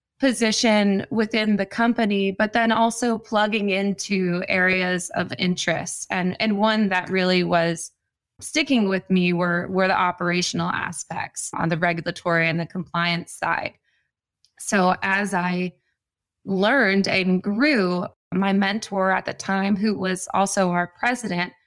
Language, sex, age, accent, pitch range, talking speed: English, female, 20-39, American, 180-205 Hz, 135 wpm